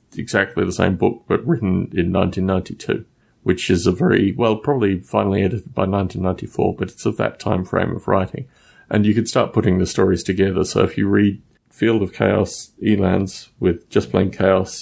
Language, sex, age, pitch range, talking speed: English, male, 30-49, 95-110 Hz, 185 wpm